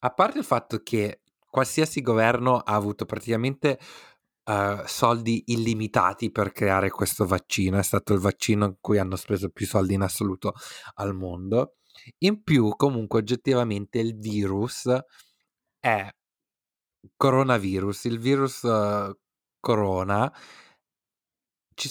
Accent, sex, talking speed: native, male, 115 wpm